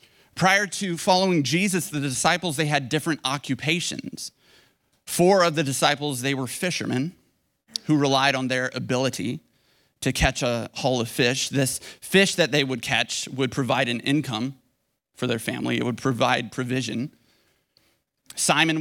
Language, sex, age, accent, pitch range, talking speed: English, male, 30-49, American, 125-155 Hz, 145 wpm